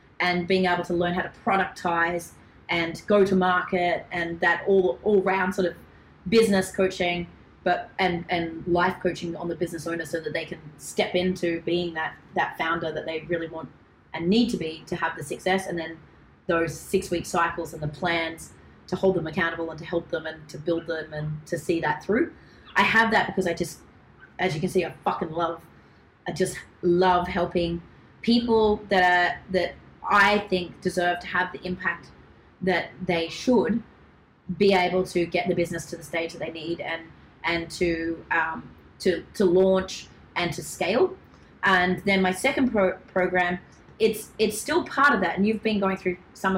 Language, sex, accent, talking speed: English, female, Australian, 190 wpm